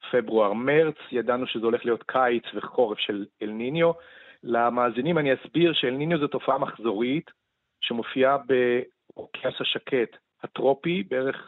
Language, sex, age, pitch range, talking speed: Hebrew, male, 40-59, 125-160 Hz, 110 wpm